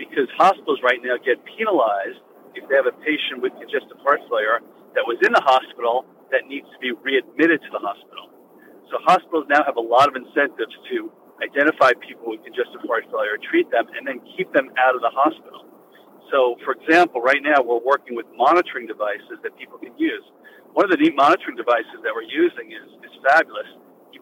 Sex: male